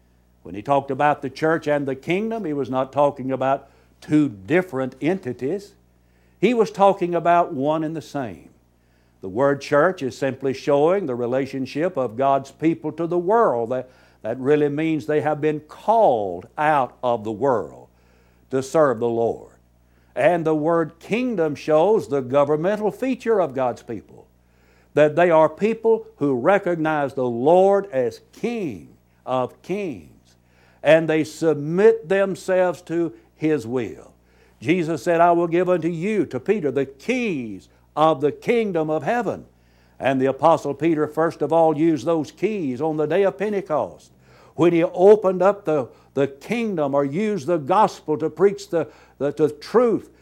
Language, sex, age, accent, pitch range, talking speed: English, male, 60-79, American, 125-170 Hz, 160 wpm